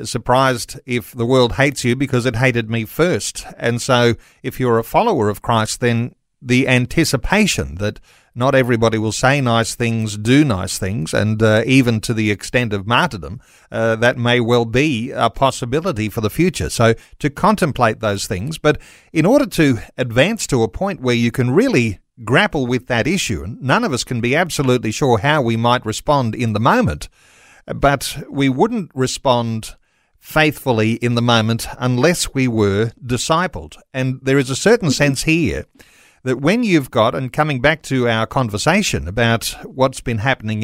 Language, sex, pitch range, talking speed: English, male, 115-140 Hz, 175 wpm